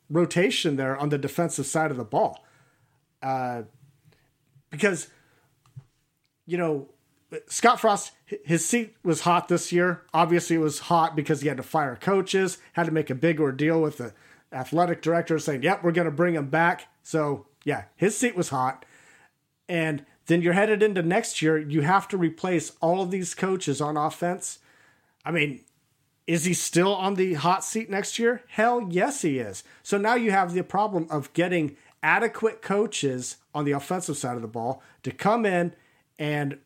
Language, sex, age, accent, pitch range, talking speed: English, male, 40-59, American, 140-185 Hz, 175 wpm